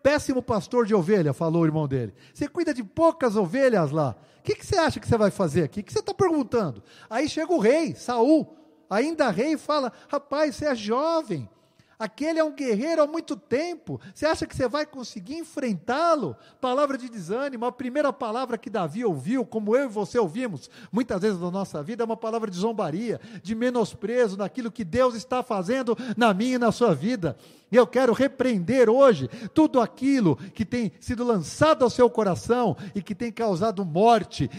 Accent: Brazilian